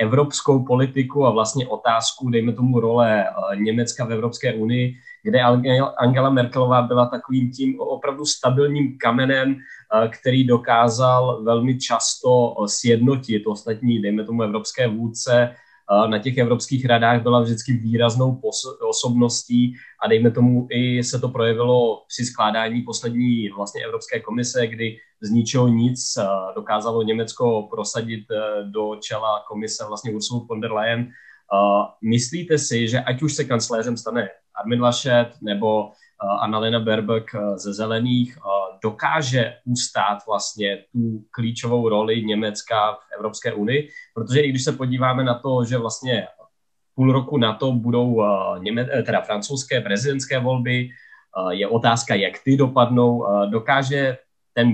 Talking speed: 130 wpm